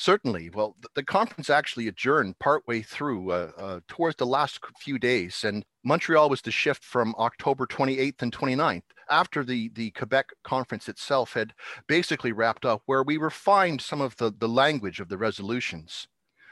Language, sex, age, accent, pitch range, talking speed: English, male, 40-59, American, 115-145 Hz, 165 wpm